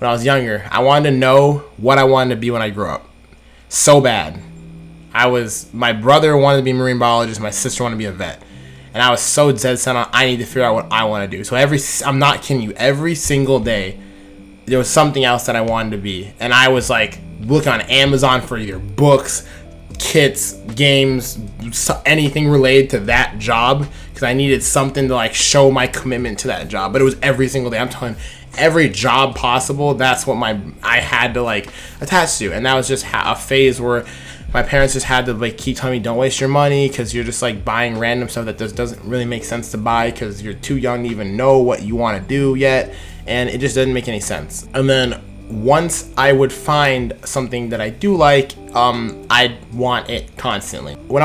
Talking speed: 225 wpm